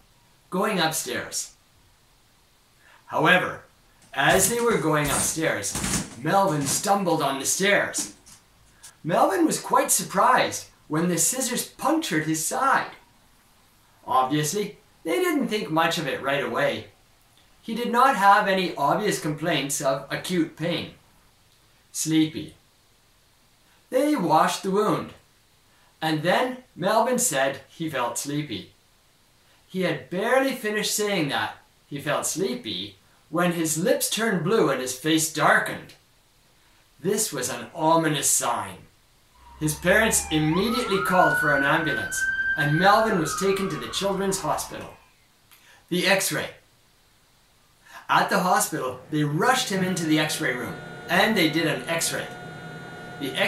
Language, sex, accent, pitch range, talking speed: English, male, American, 150-205 Hz, 125 wpm